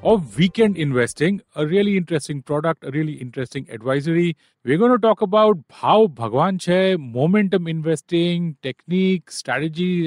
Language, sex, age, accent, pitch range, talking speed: English, male, 40-59, Indian, 140-180 Hz, 135 wpm